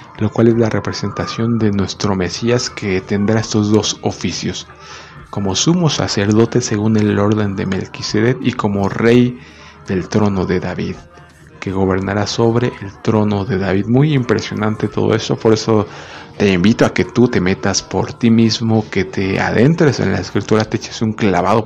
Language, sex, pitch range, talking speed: Spanish, male, 100-115 Hz, 170 wpm